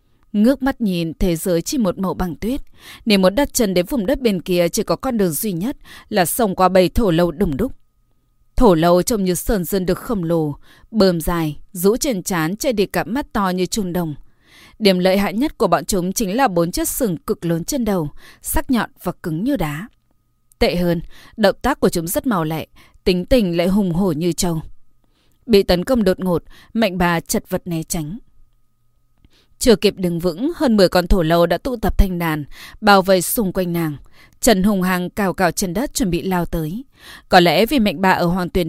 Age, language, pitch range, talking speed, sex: 20-39, Vietnamese, 170-225 Hz, 220 wpm, female